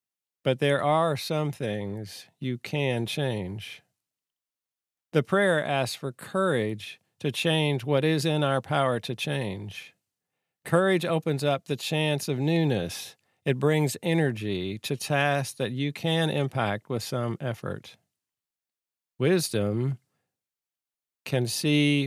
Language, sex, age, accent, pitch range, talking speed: English, male, 50-69, American, 115-150 Hz, 120 wpm